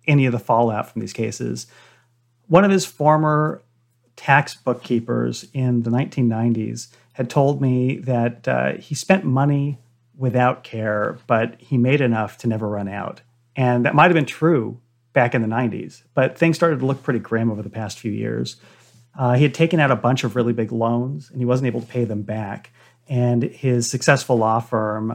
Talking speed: 190 wpm